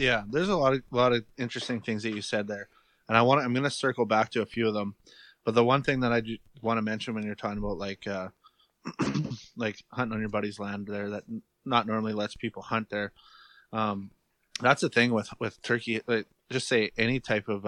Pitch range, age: 105-115 Hz, 20-39